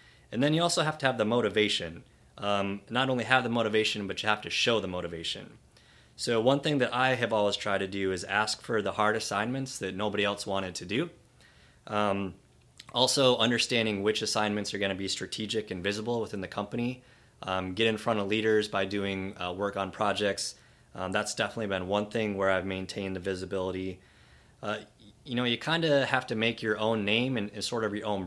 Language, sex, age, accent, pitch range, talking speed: English, male, 20-39, American, 95-120 Hz, 210 wpm